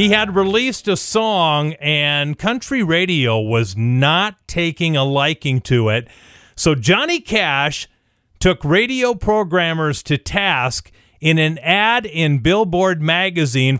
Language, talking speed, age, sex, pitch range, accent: English, 125 wpm, 40-59, male, 135-190 Hz, American